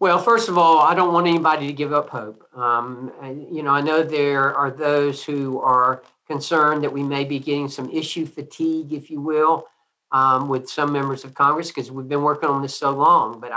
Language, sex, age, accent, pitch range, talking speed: English, male, 50-69, American, 135-165 Hz, 215 wpm